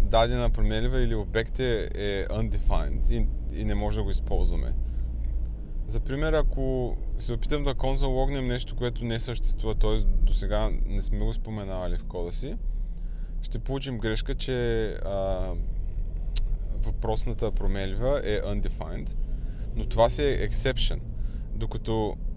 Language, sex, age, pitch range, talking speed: Bulgarian, male, 20-39, 95-130 Hz, 130 wpm